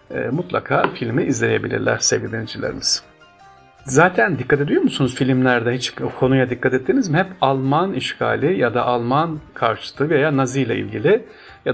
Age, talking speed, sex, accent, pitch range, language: 50-69, 140 wpm, male, native, 125-170 Hz, Turkish